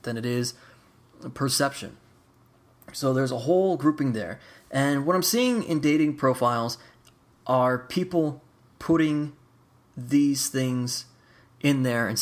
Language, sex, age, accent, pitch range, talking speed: English, male, 20-39, American, 120-145 Hz, 125 wpm